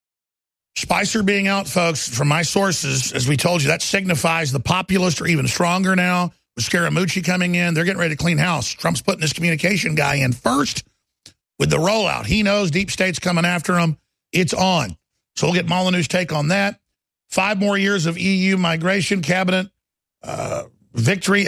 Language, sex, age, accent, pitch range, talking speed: English, male, 50-69, American, 155-190 Hz, 175 wpm